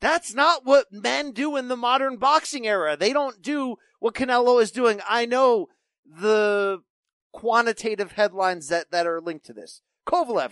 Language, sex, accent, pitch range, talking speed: English, male, American, 150-235 Hz, 165 wpm